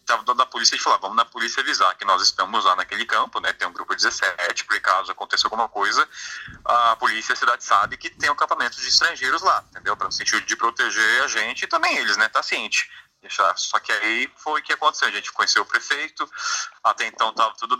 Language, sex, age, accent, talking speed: Portuguese, male, 30-49, Brazilian, 230 wpm